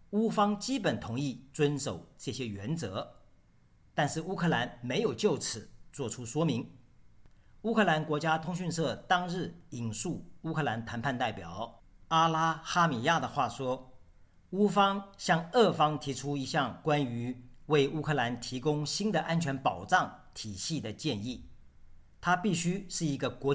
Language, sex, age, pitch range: Chinese, male, 50-69, 120-160 Hz